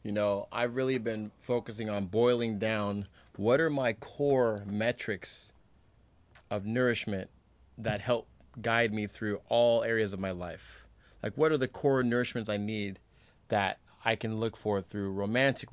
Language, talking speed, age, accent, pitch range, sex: English, 155 wpm, 30-49, American, 105-125 Hz, male